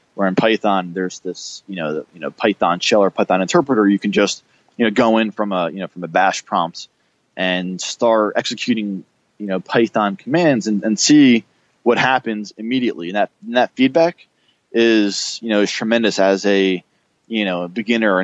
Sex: male